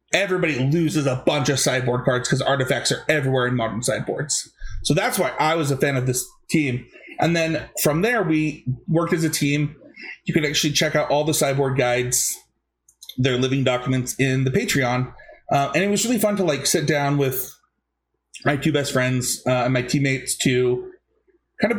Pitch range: 130-155 Hz